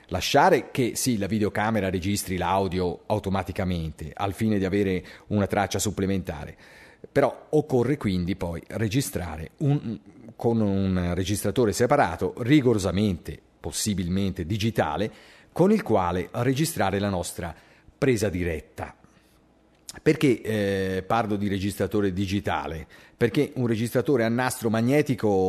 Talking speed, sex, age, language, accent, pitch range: 115 wpm, male, 40-59, Italian, native, 95-115 Hz